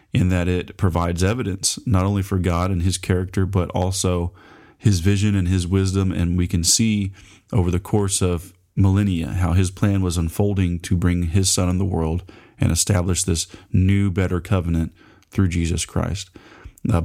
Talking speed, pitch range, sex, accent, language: 175 wpm, 85-100 Hz, male, American, English